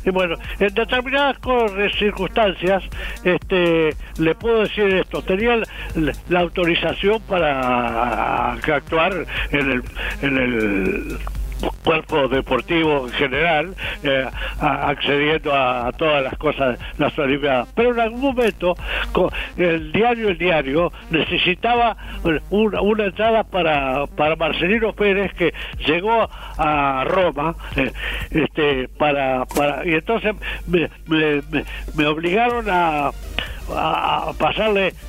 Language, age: English, 70-89